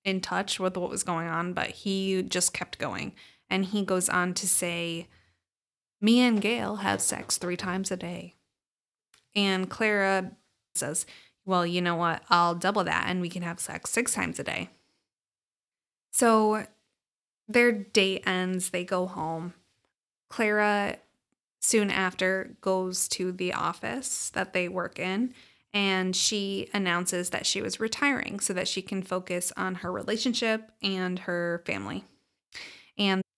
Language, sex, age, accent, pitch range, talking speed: English, female, 20-39, American, 180-205 Hz, 150 wpm